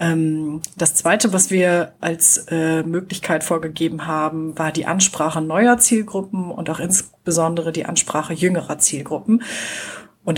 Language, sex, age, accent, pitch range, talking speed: German, female, 40-59, German, 160-185 Hz, 125 wpm